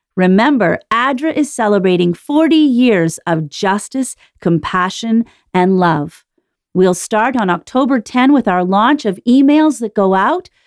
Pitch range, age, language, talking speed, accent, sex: 180-265 Hz, 40-59, English, 135 wpm, American, female